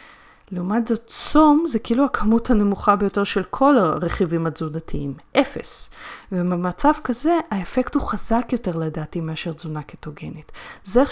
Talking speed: 135 wpm